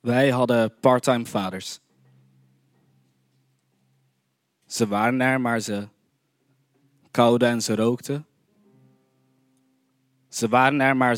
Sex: male